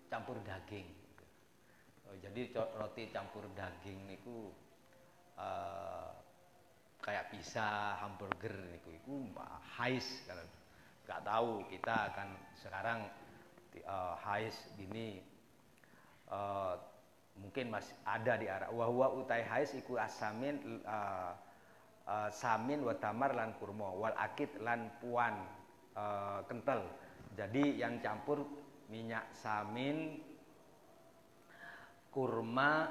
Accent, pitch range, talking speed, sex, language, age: native, 100-130 Hz, 100 wpm, male, Indonesian, 40-59